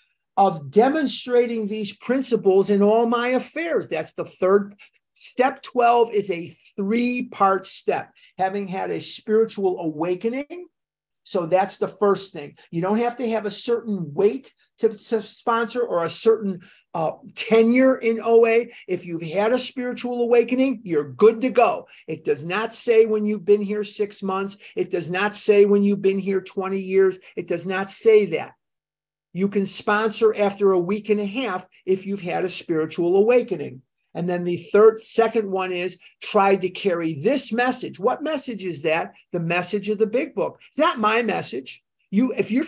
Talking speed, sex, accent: 175 wpm, male, American